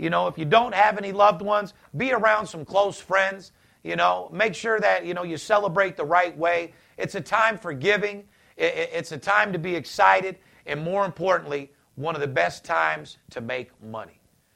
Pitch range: 165-210 Hz